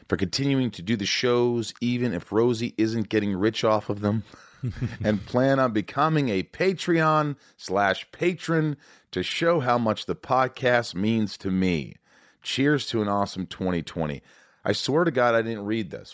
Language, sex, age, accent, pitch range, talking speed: English, male, 40-59, American, 90-125 Hz, 165 wpm